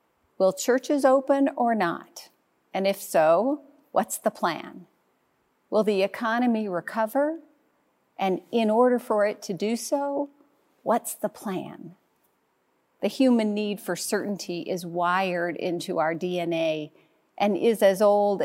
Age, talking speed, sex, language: 40-59, 130 wpm, female, English